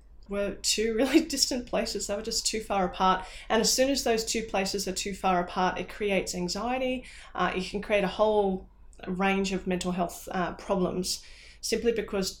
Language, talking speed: English, 190 wpm